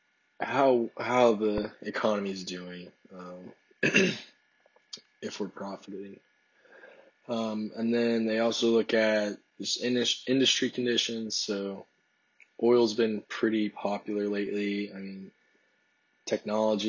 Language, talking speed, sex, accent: English, 105 wpm, male, American